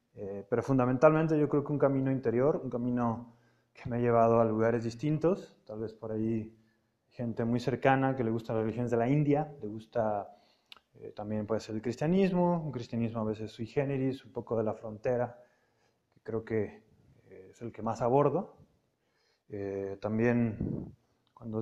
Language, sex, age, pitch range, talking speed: Spanish, male, 20-39, 115-140 Hz, 180 wpm